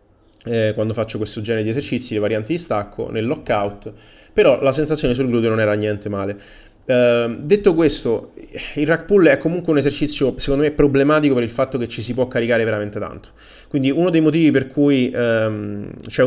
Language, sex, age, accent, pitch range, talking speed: Italian, male, 20-39, native, 110-130 Hz, 195 wpm